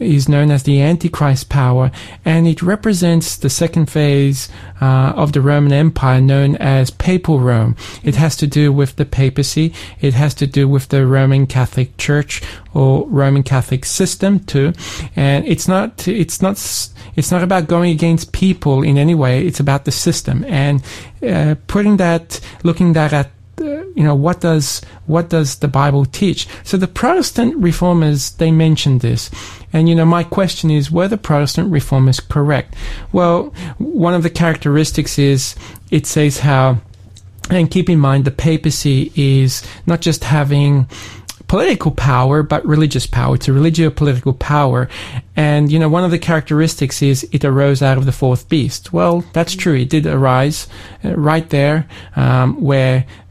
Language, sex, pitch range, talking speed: English, male, 130-165 Hz, 165 wpm